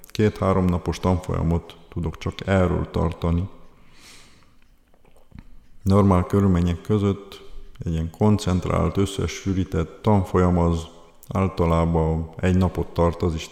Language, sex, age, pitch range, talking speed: Hungarian, male, 50-69, 85-100 Hz, 100 wpm